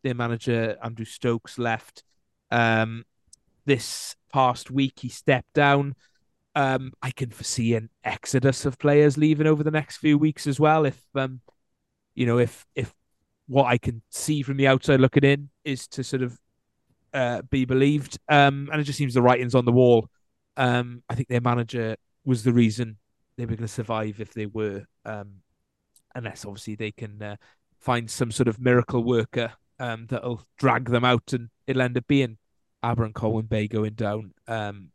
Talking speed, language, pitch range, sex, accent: 180 wpm, English, 115-140 Hz, male, British